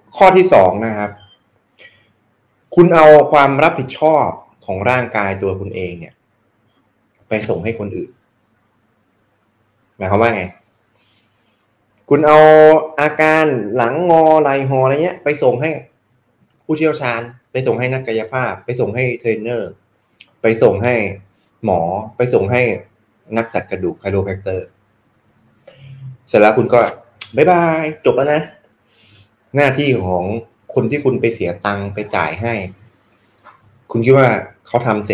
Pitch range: 105-135 Hz